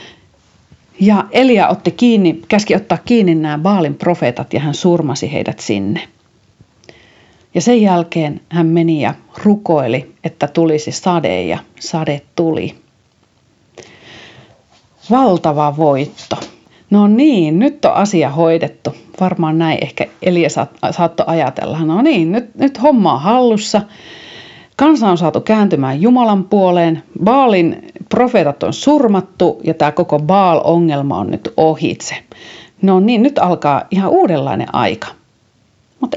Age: 40-59